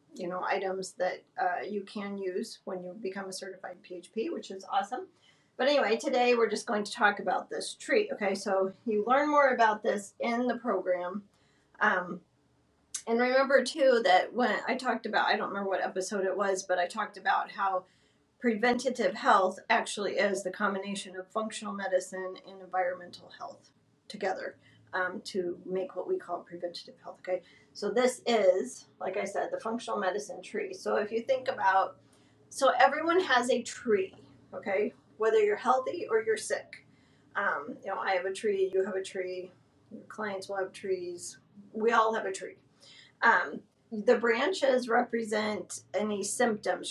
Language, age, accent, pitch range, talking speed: English, 40-59, American, 185-240 Hz, 175 wpm